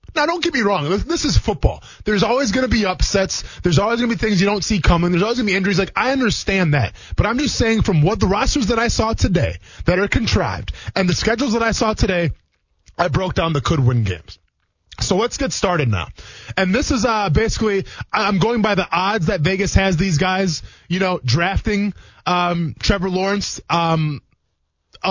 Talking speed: 215 wpm